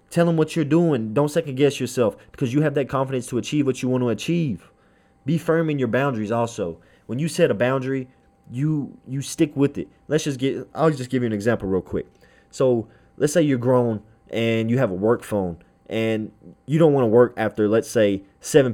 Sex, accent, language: male, American, English